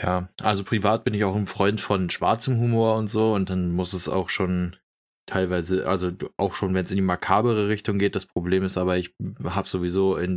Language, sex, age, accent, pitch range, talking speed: German, male, 20-39, German, 90-100 Hz, 220 wpm